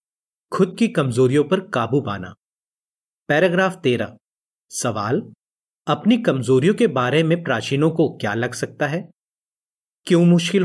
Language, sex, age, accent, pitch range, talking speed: Hindi, male, 30-49, native, 120-190 Hz, 125 wpm